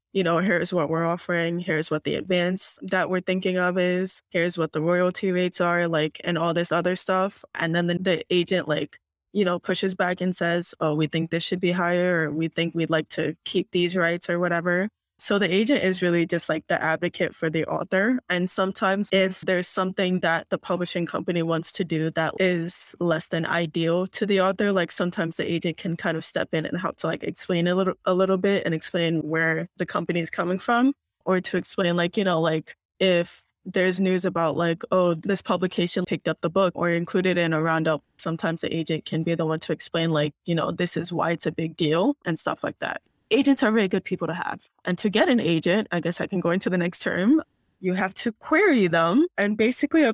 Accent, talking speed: American, 230 wpm